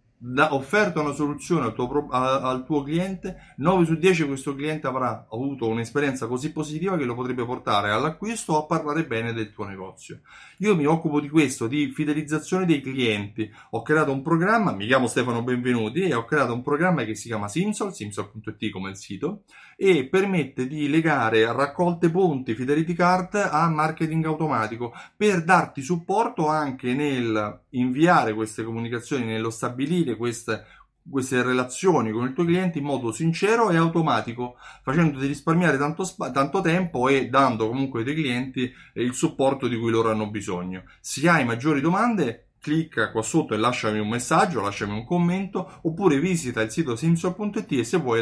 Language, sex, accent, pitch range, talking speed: Italian, male, native, 115-165 Hz, 165 wpm